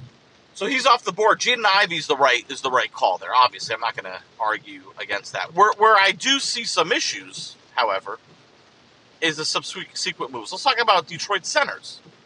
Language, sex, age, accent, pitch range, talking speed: English, male, 40-59, American, 130-185 Hz, 180 wpm